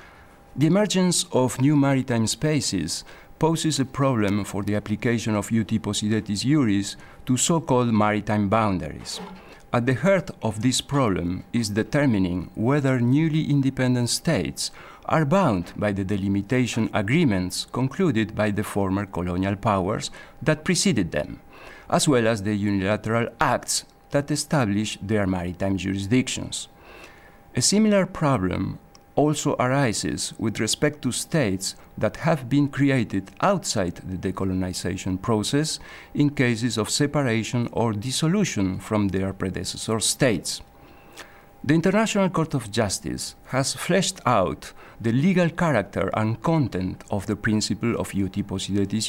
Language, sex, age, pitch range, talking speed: English, male, 50-69, 100-140 Hz, 125 wpm